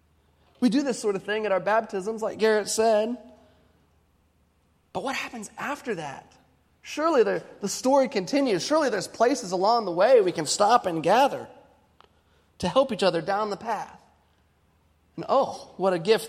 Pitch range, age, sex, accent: 170-245 Hz, 30-49, male, American